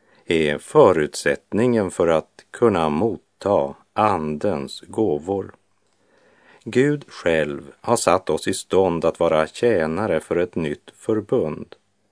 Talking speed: 110 wpm